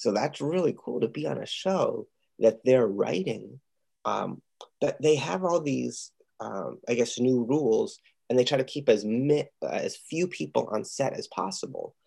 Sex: male